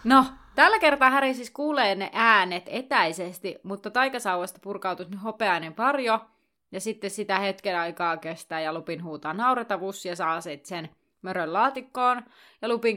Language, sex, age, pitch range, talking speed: Finnish, female, 30-49, 180-225 Hz, 150 wpm